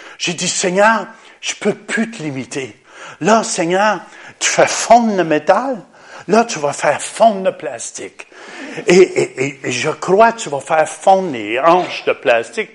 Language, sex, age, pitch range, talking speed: French, male, 50-69, 180-300 Hz, 170 wpm